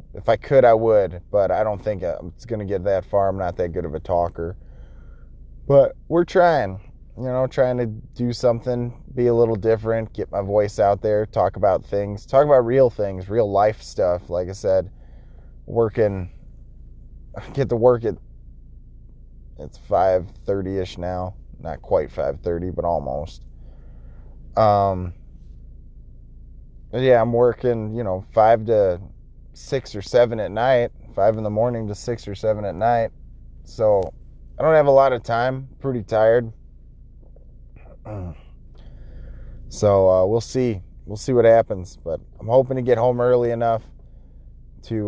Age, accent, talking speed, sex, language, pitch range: 20-39, American, 155 wpm, male, English, 95-130 Hz